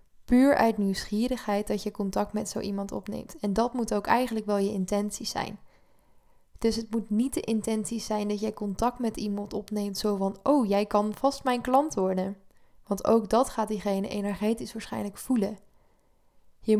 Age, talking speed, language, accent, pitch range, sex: 10-29, 180 wpm, Dutch, Dutch, 205-235 Hz, female